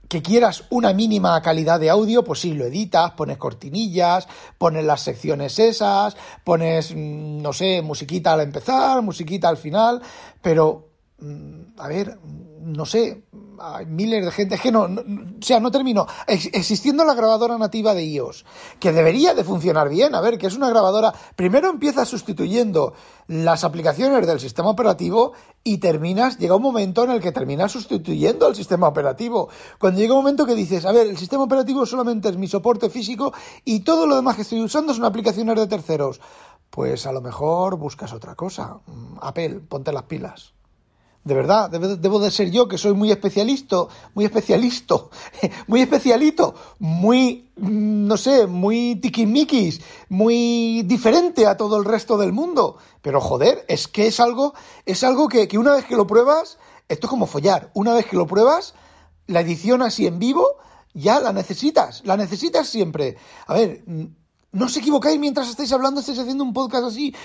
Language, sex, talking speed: Spanish, male, 175 wpm